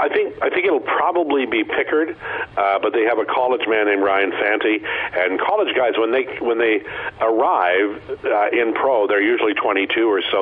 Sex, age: male, 50-69